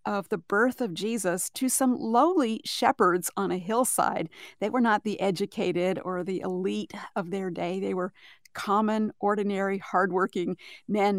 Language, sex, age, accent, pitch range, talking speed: English, female, 50-69, American, 195-240 Hz, 155 wpm